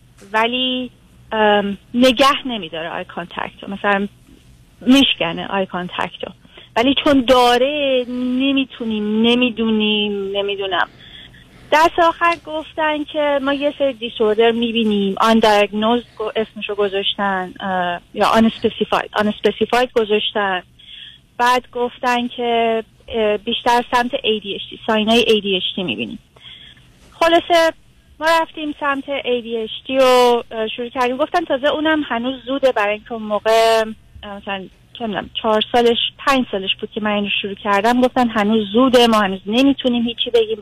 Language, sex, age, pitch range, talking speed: Persian, female, 30-49, 210-265 Hz, 120 wpm